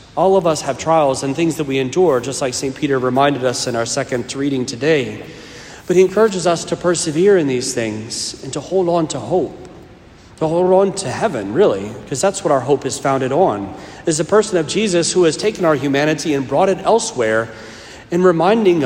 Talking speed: 210 wpm